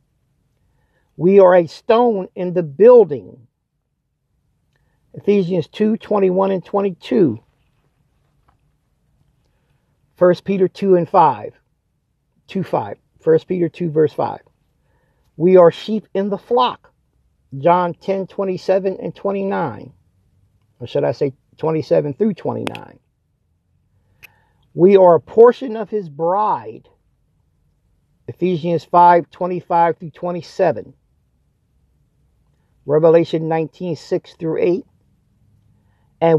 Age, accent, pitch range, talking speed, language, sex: 50-69, American, 145-190 Hz, 100 wpm, English, male